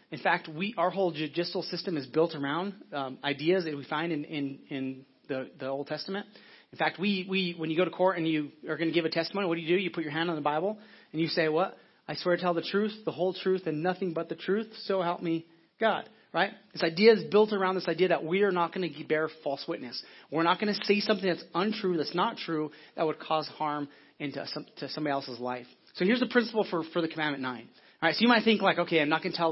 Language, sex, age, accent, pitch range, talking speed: English, male, 30-49, American, 150-190 Hz, 270 wpm